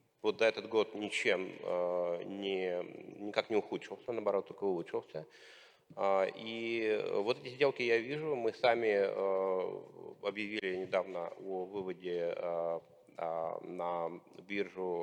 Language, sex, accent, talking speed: Russian, male, native, 120 wpm